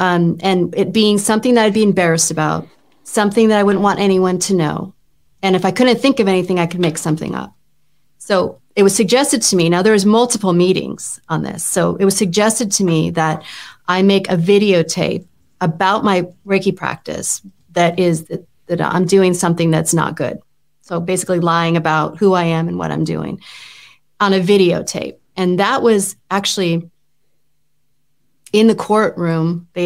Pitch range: 170-200 Hz